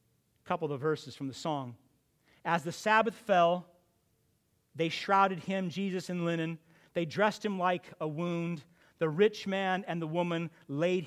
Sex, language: male, English